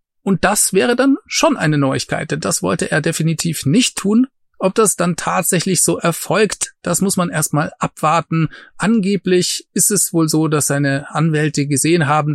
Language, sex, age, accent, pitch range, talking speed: German, male, 30-49, German, 150-205 Hz, 165 wpm